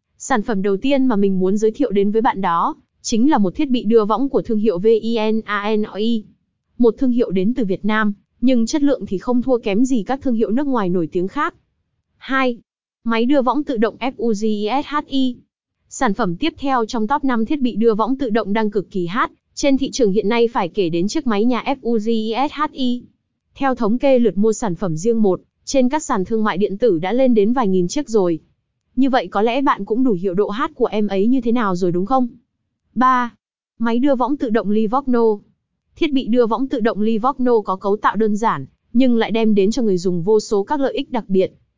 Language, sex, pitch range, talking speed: Vietnamese, female, 210-255 Hz, 225 wpm